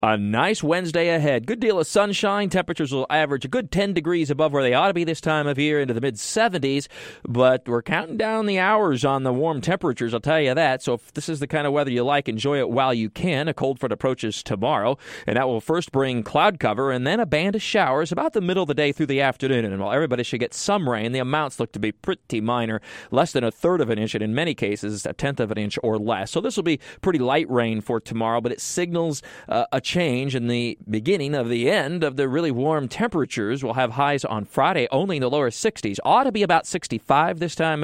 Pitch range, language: 120-170 Hz, English